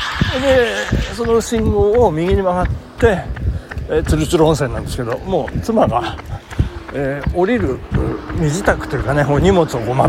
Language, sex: Japanese, male